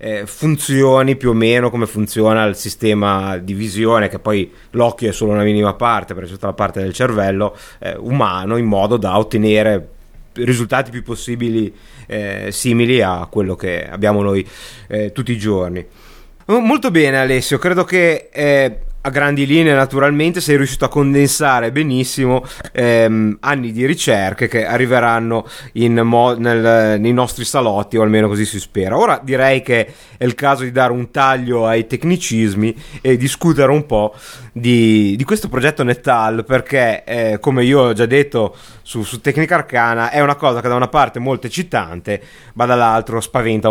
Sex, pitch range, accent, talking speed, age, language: male, 110-135 Hz, native, 165 wpm, 30-49, Italian